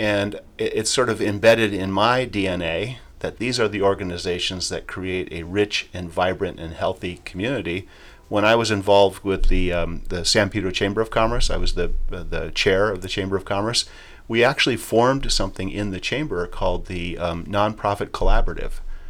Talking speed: 180 wpm